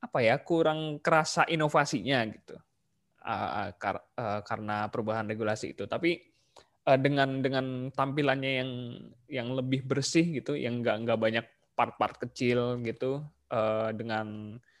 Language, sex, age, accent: Indonesian, male, 20-39, native